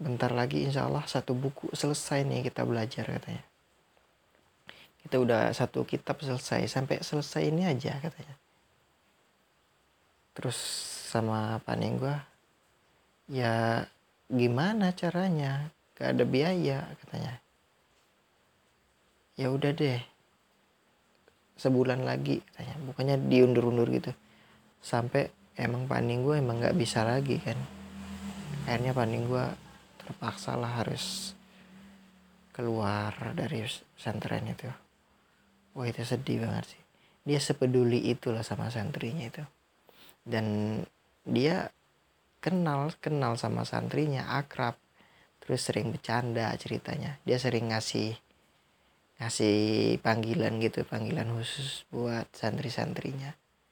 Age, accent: 20-39, native